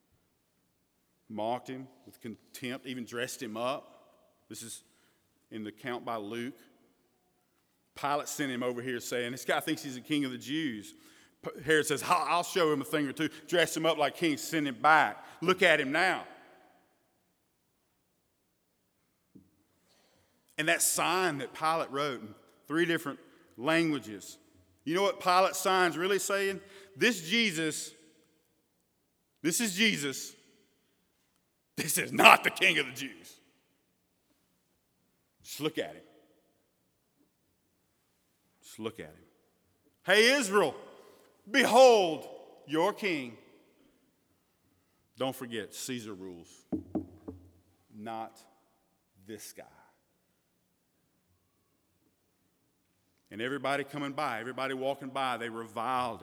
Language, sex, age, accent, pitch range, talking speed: English, male, 40-59, American, 115-160 Hz, 115 wpm